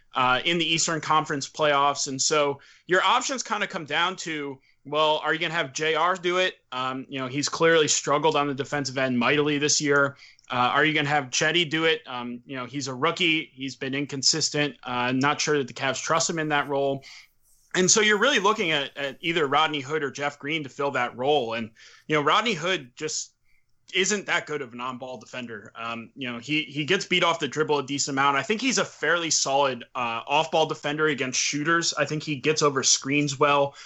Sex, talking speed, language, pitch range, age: male, 225 wpm, English, 135-160 Hz, 20-39